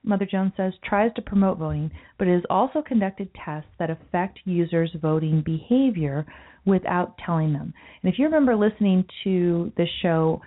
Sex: female